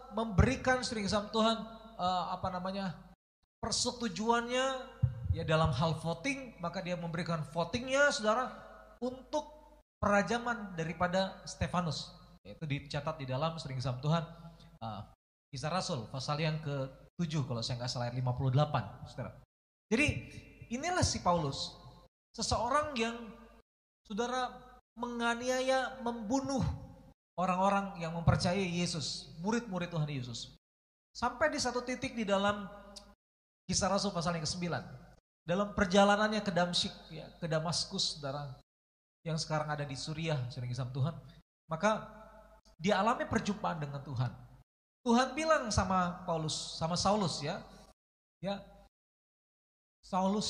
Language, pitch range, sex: Indonesian, 145-215 Hz, male